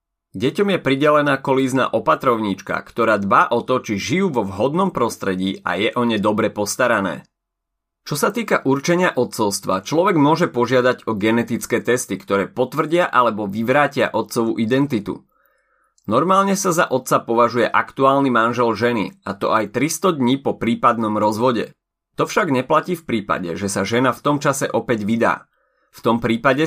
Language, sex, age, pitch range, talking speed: Slovak, male, 30-49, 110-145 Hz, 155 wpm